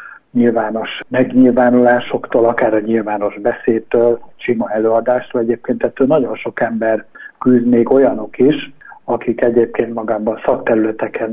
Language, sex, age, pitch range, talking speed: Hungarian, male, 60-79, 110-125 Hz, 105 wpm